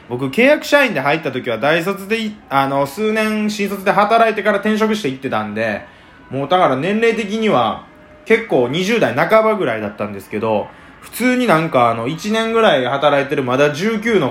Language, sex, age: Japanese, male, 20-39